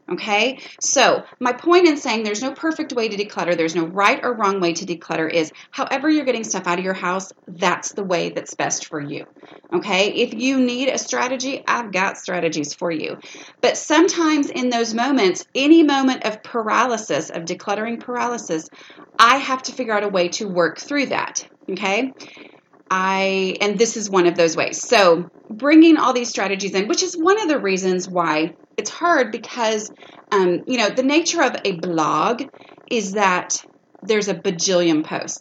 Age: 30-49